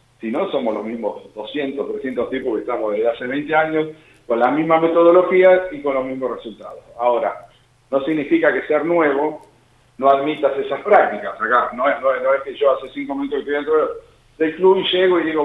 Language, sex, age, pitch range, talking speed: Spanish, male, 40-59, 130-170 Hz, 210 wpm